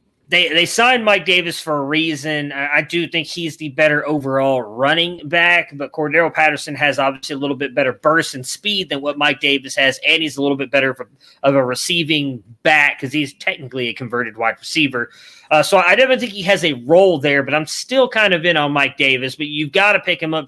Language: English